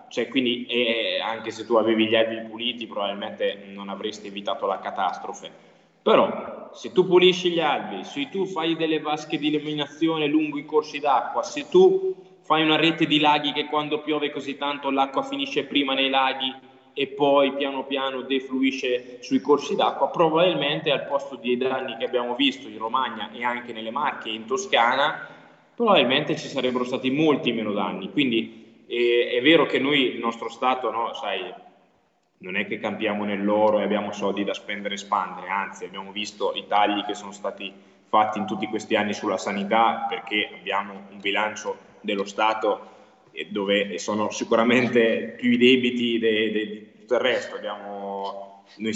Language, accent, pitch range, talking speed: Italian, native, 105-145 Hz, 170 wpm